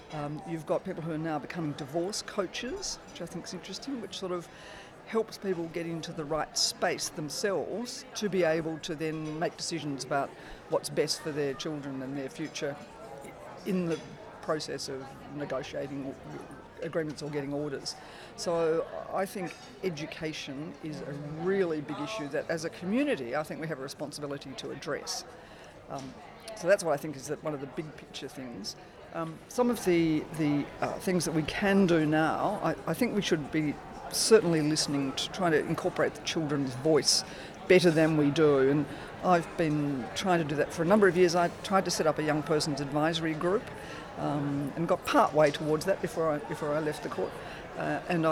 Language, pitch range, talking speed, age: English, 150-180 Hz, 190 wpm, 50-69